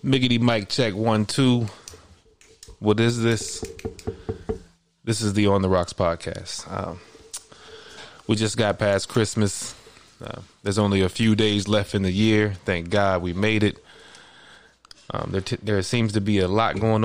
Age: 20-39